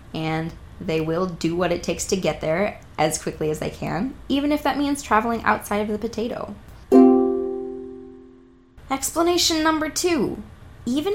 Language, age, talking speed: English, 20-39, 150 wpm